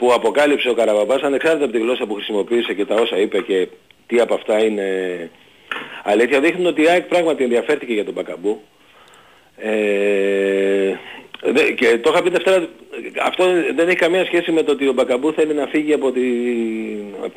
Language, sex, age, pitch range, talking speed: Greek, male, 40-59, 115-170 Hz, 175 wpm